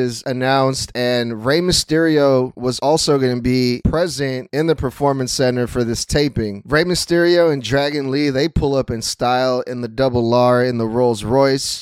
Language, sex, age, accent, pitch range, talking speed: English, male, 20-39, American, 125-150 Hz, 180 wpm